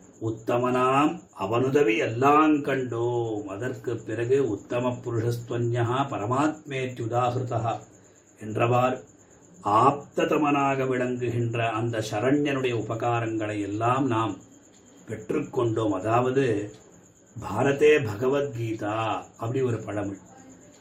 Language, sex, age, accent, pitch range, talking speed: Tamil, male, 40-59, native, 115-145 Hz, 70 wpm